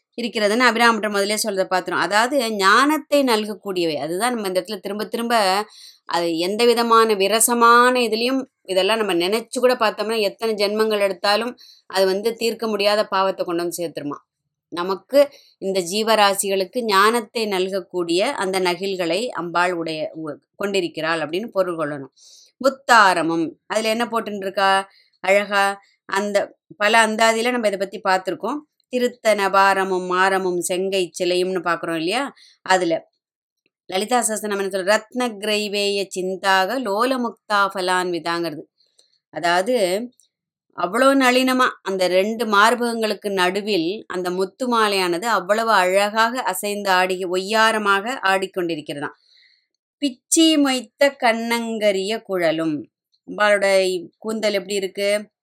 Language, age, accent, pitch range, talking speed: Tamil, 20-39, native, 185-230 Hz, 100 wpm